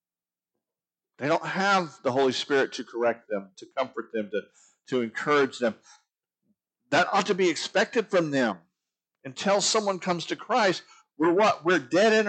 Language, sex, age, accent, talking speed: English, male, 50-69, American, 160 wpm